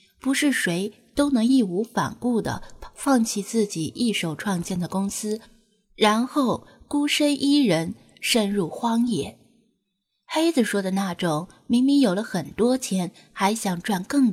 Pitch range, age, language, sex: 180-240 Hz, 20-39, Chinese, female